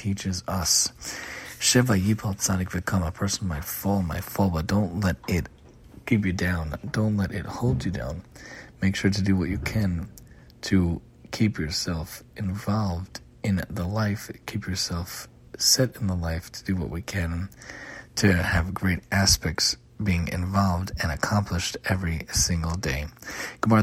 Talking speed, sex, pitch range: 145 wpm, male, 90-105 Hz